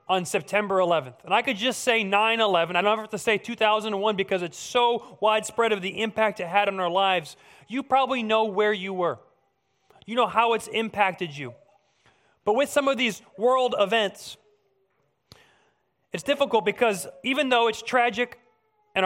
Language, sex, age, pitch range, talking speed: English, male, 30-49, 185-235 Hz, 170 wpm